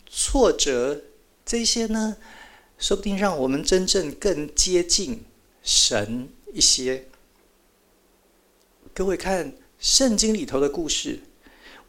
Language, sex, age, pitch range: Chinese, male, 50-69, 160-235 Hz